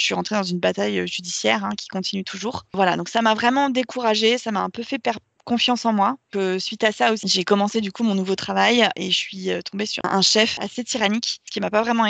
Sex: female